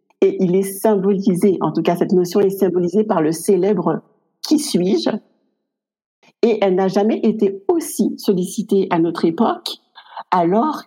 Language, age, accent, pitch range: French, 50-69, French, 175-215 Hz